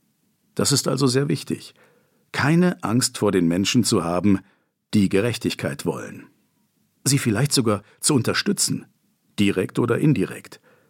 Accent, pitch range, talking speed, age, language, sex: German, 105-140 Hz, 125 wpm, 50-69, German, male